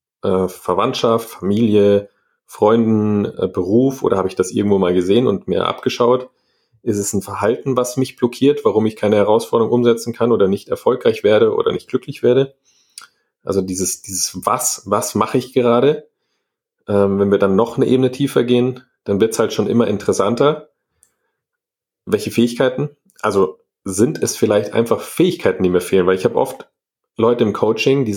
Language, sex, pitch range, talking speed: German, male, 110-140 Hz, 170 wpm